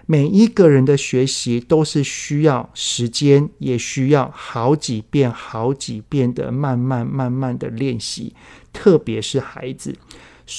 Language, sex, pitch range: Chinese, male, 125-155 Hz